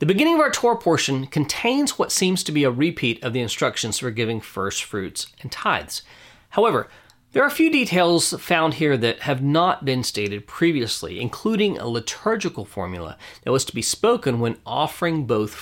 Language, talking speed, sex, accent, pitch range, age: English, 185 wpm, male, American, 120-165 Hz, 40-59